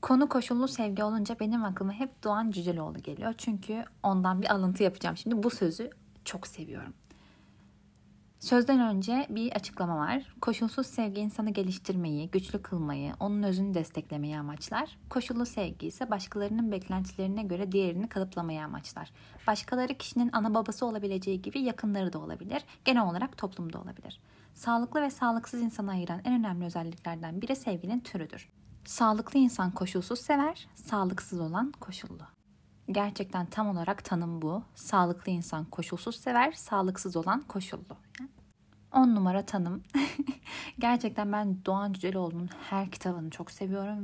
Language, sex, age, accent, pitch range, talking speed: Turkish, female, 30-49, native, 185-235 Hz, 135 wpm